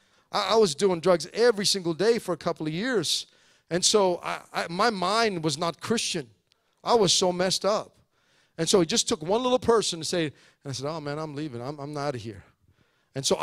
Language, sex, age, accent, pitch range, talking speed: English, male, 50-69, American, 150-200 Hz, 225 wpm